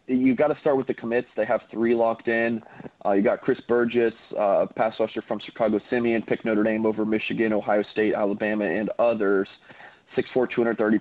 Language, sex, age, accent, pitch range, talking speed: English, male, 30-49, American, 105-120 Hz, 195 wpm